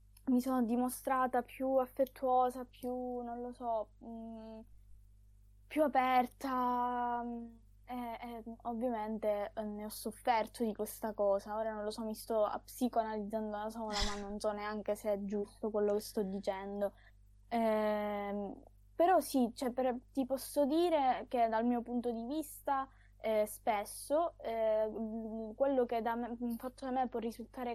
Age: 10-29